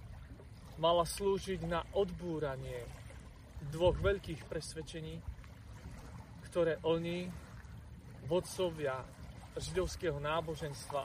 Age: 30-49